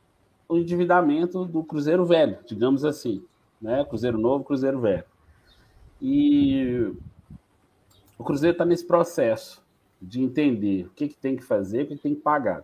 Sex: male